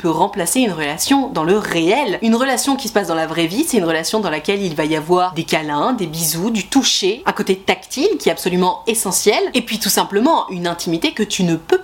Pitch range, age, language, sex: 190-290 Hz, 20-39, French, female